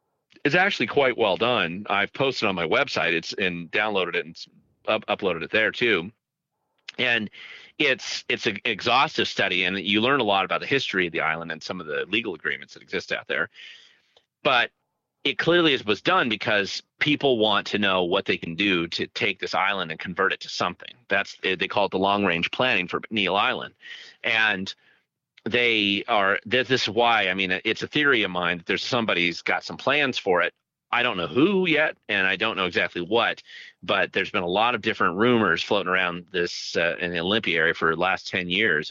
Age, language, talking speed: 40-59, English, 200 wpm